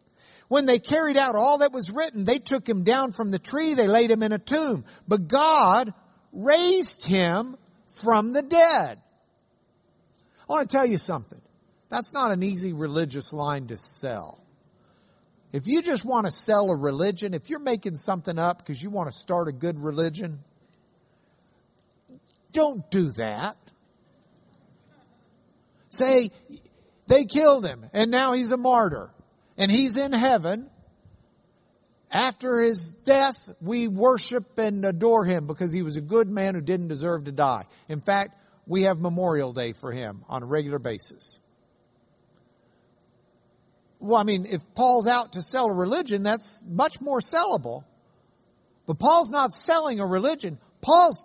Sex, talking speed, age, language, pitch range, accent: male, 155 wpm, 50-69, English, 180-270 Hz, American